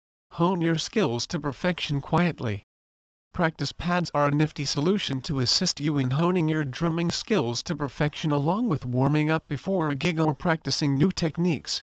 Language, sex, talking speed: English, male, 165 wpm